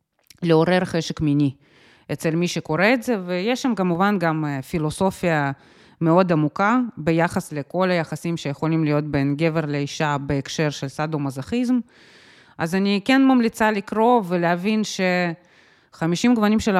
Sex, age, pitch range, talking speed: female, 30-49, 160-200 Hz, 125 wpm